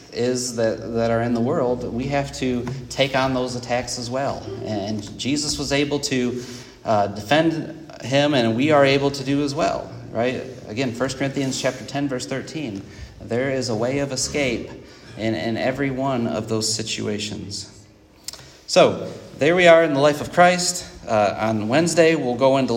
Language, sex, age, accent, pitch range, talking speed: English, male, 30-49, American, 110-135 Hz, 180 wpm